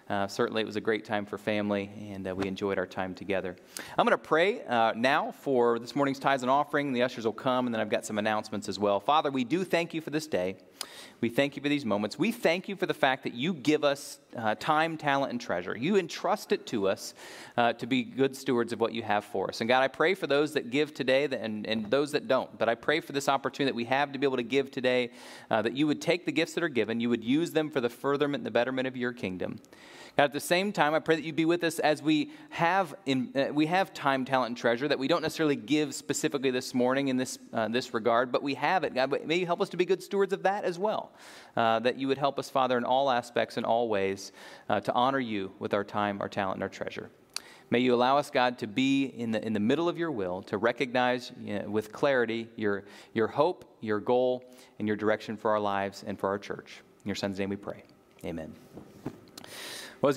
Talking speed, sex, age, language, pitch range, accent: 260 wpm, male, 30-49, English, 115-150 Hz, American